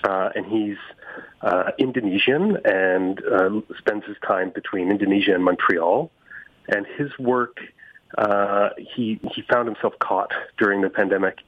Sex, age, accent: male, 30-49, Canadian